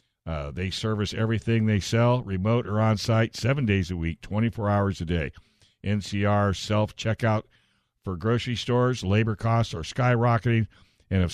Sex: male